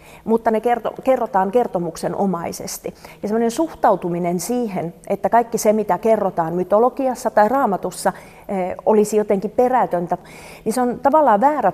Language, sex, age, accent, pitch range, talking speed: Finnish, female, 40-59, native, 180-220 Hz, 130 wpm